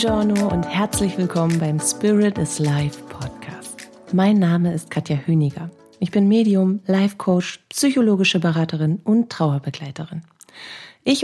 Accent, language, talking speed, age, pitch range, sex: German, German, 130 wpm, 30-49, 160-200 Hz, female